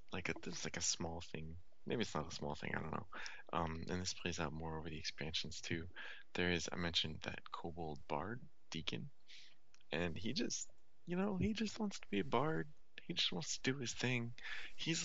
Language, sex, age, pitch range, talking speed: English, male, 20-39, 80-105 Hz, 215 wpm